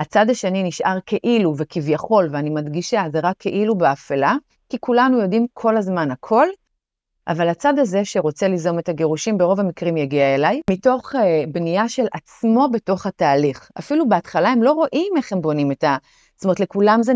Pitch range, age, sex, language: 155-215 Hz, 30-49, female, Hebrew